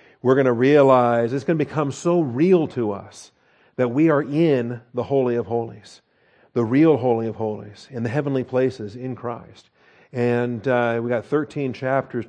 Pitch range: 110-130 Hz